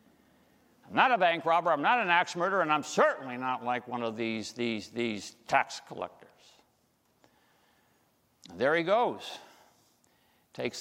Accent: American